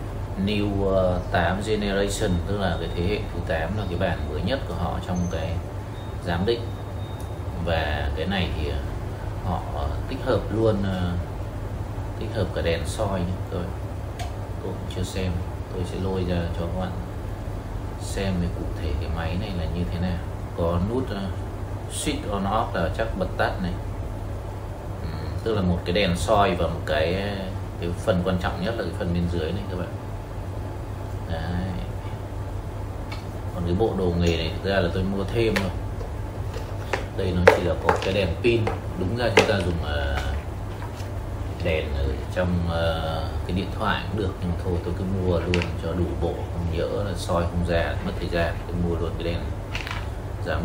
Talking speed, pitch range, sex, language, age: 180 wpm, 90-100 Hz, male, English, 20-39